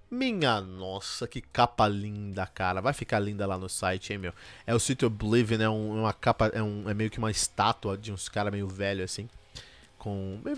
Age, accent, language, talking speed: 20-39, Brazilian, Portuguese, 210 wpm